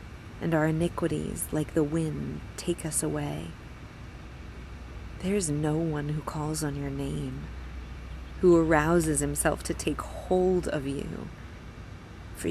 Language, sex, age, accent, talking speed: English, female, 30-49, American, 125 wpm